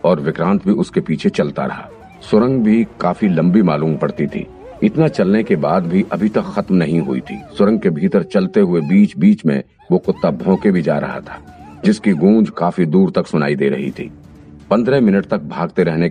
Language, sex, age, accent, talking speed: Hindi, male, 50-69, native, 200 wpm